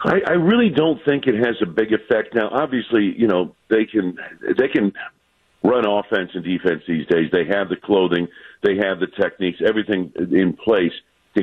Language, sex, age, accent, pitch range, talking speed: English, male, 50-69, American, 95-135 Hz, 190 wpm